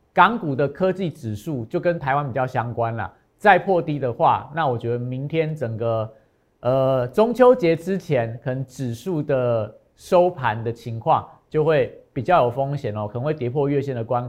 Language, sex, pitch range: Chinese, male, 125-175 Hz